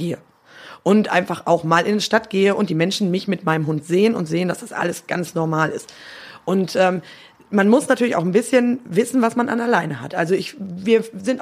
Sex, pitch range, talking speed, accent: female, 170-225 Hz, 215 wpm, German